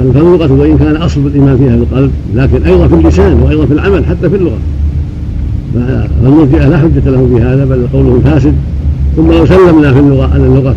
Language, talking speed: Arabic, 180 wpm